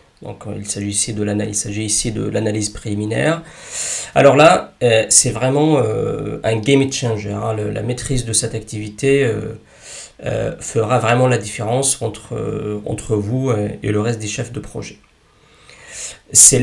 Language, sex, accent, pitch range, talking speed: French, male, French, 105-130 Hz, 165 wpm